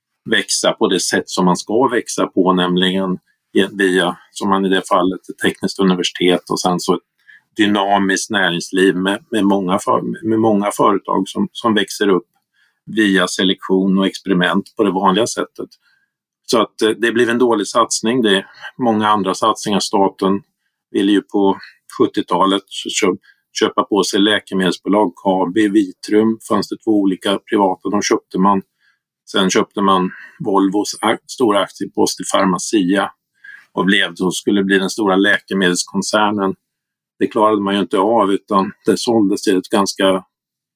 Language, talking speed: Swedish, 150 wpm